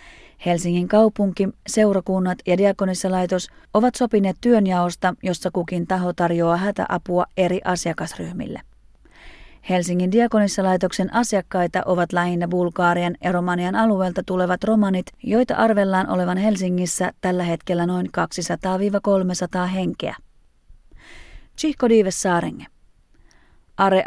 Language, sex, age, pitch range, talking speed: Finnish, female, 30-49, 180-205 Hz, 90 wpm